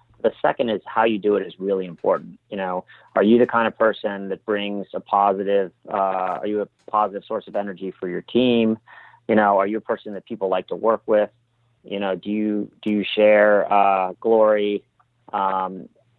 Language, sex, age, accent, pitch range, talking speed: English, male, 30-49, American, 100-120 Hz, 205 wpm